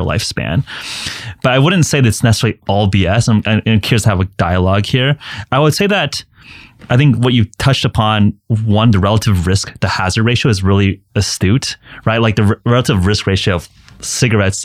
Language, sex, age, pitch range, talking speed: English, male, 30-49, 100-125 Hz, 190 wpm